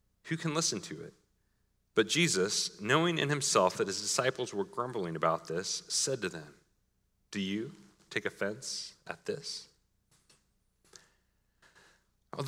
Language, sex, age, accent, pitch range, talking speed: English, male, 30-49, American, 135-175 Hz, 130 wpm